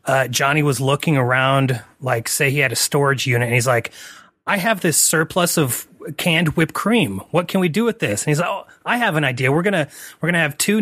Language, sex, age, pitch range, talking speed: English, male, 30-49, 135-175 Hz, 240 wpm